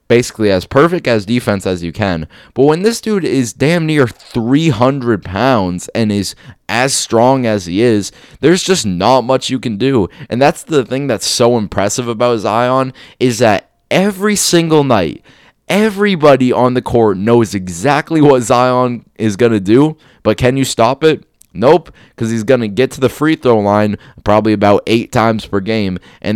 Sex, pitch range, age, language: male, 95-125 Hz, 20-39, English